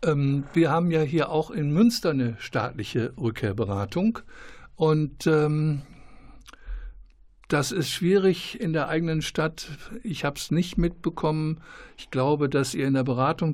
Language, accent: German, German